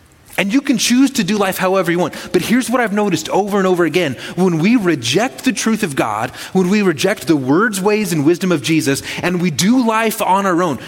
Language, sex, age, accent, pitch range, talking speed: English, male, 30-49, American, 120-180 Hz, 235 wpm